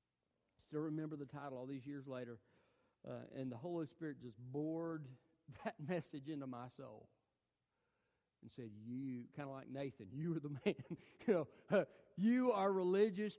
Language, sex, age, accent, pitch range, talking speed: English, male, 40-59, American, 120-165 Hz, 165 wpm